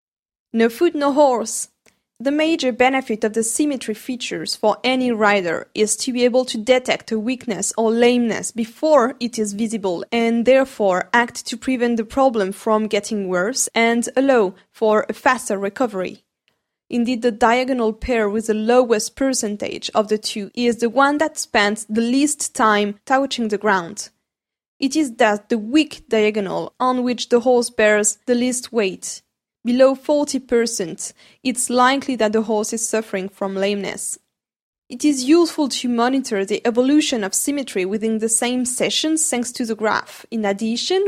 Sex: female